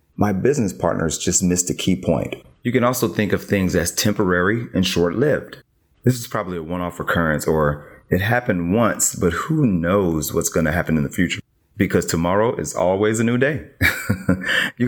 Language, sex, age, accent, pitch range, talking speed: English, male, 30-49, American, 90-120 Hz, 195 wpm